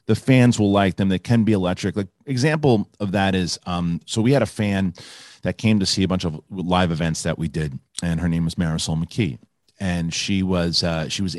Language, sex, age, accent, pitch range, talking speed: English, male, 40-59, American, 85-110 Hz, 230 wpm